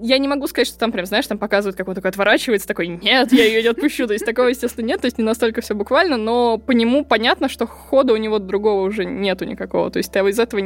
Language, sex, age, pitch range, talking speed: Russian, female, 20-39, 200-260 Hz, 270 wpm